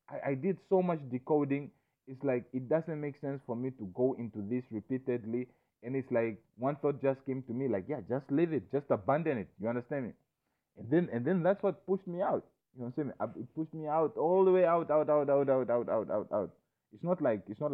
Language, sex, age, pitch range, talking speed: English, male, 30-49, 120-155 Hz, 245 wpm